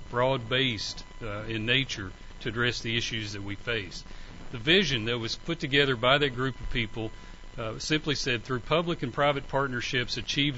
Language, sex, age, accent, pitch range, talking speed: English, male, 40-59, American, 115-140 Hz, 180 wpm